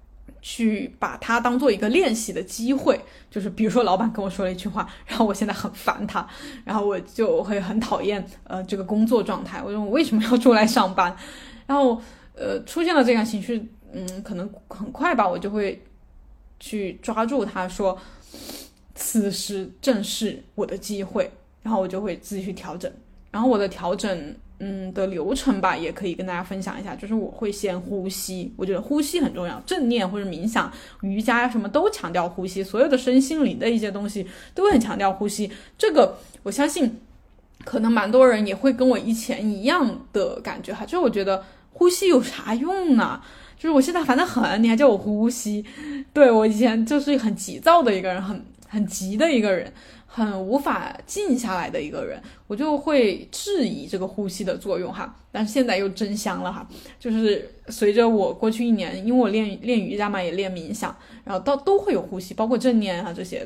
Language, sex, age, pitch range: Chinese, female, 10-29, 195-255 Hz